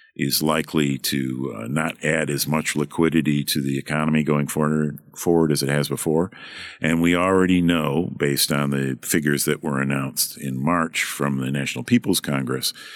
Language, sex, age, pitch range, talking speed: English, male, 50-69, 70-85 Hz, 170 wpm